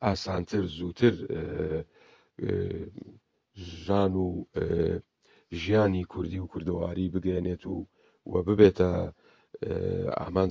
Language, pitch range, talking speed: Turkish, 90-105 Hz, 70 wpm